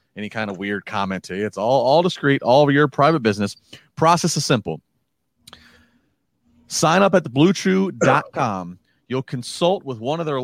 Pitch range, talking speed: 115-150 Hz, 170 wpm